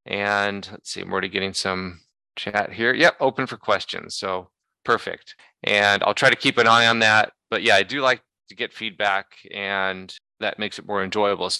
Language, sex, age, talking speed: English, male, 30-49, 200 wpm